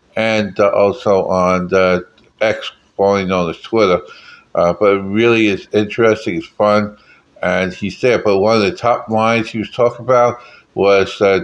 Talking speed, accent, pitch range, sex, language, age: 175 wpm, American, 95-115 Hz, male, English, 60-79